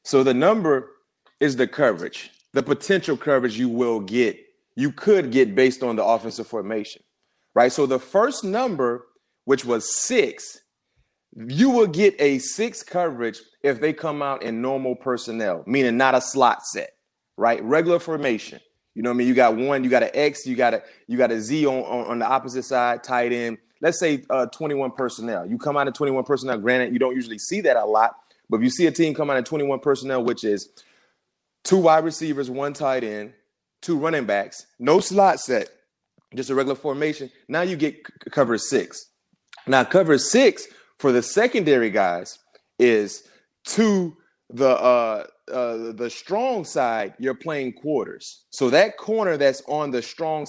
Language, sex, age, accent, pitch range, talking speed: English, male, 30-49, American, 125-160 Hz, 185 wpm